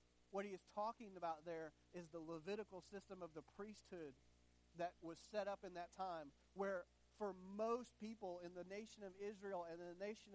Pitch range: 175-230 Hz